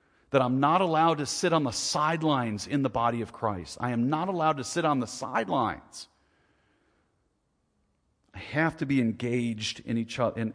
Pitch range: 100-130 Hz